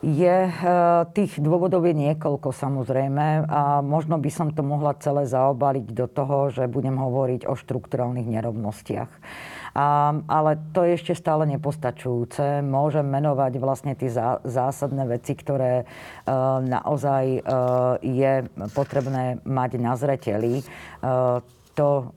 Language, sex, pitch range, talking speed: Slovak, female, 120-140 Hz, 115 wpm